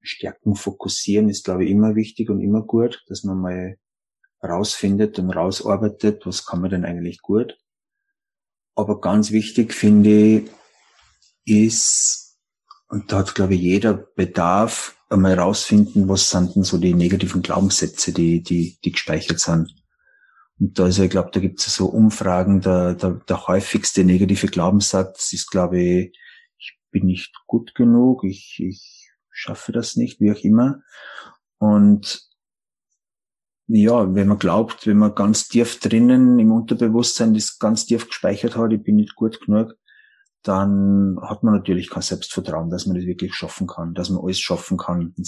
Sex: male